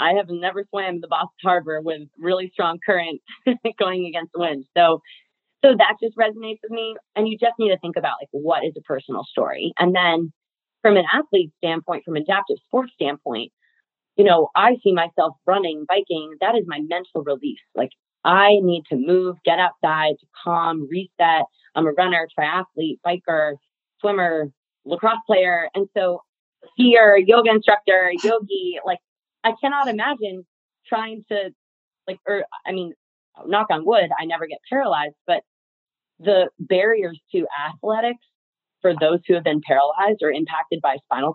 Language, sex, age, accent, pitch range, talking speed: English, female, 30-49, American, 165-210 Hz, 165 wpm